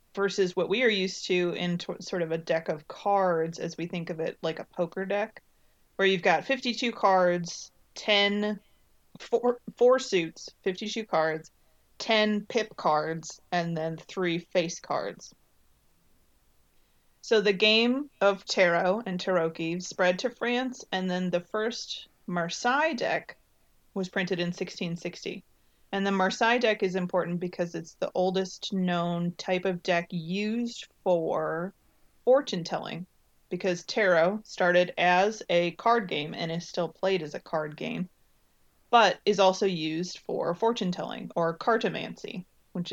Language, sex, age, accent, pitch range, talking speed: English, female, 30-49, American, 170-210 Hz, 140 wpm